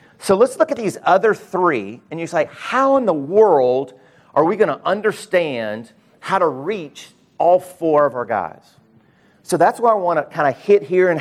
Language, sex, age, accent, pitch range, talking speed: English, male, 50-69, American, 130-175 Hz, 205 wpm